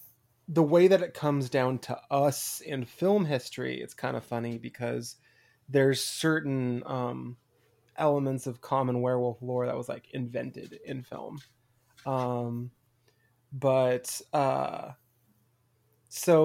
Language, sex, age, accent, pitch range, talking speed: English, male, 20-39, American, 120-140 Hz, 125 wpm